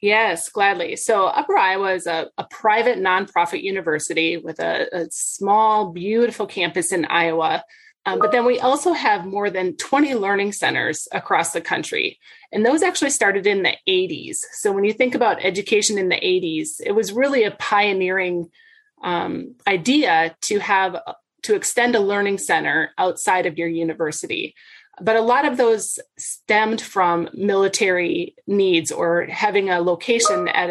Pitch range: 185-265 Hz